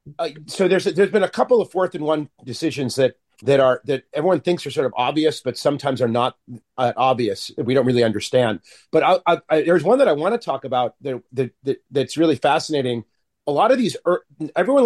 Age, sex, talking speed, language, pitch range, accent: 40-59, male, 230 wpm, English, 125-170 Hz, American